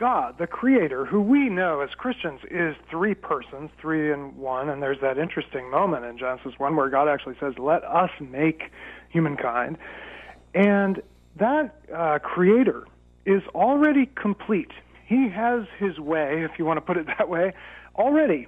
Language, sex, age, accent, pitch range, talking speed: English, male, 40-59, American, 150-215 Hz, 160 wpm